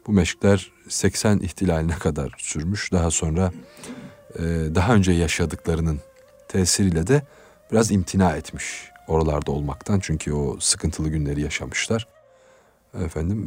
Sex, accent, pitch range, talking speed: male, native, 80-115 Hz, 110 wpm